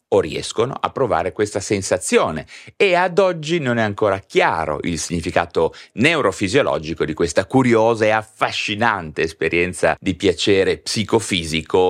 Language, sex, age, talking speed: Italian, male, 30-49, 125 wpm